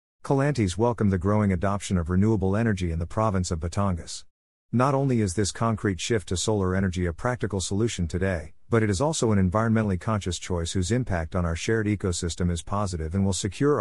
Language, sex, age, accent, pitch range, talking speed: English, male, 50-69, American, 90-110 Hz, 195 wpm